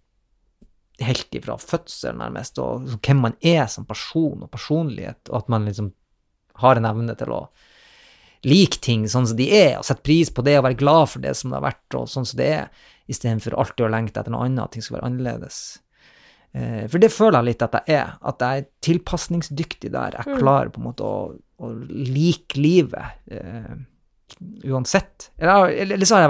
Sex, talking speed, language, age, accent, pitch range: male, 195 wpm, English, 30-49, Norwegian, 115-165 Hz